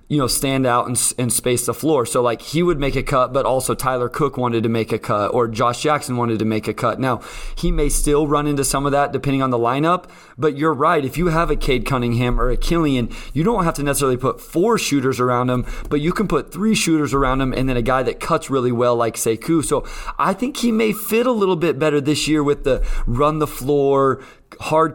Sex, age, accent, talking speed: male, 30-49, American, 250 wpm